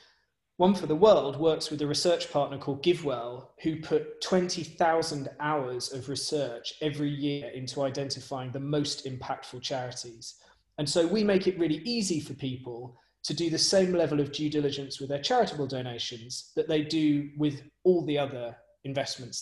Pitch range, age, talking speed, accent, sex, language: 135-165 Hz, 20-39, 165 wpm, British, male, English